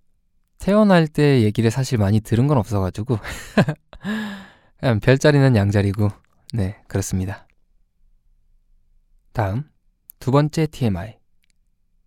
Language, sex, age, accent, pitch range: Korean, male, 20-39, native, 100-135 Hz